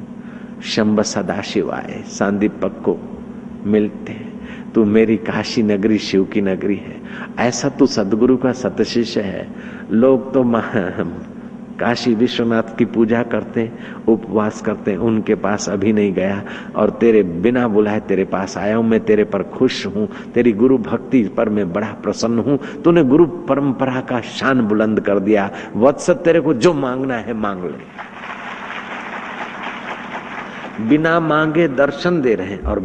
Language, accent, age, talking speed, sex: Hindi, native, 60-79, 140 wpm, male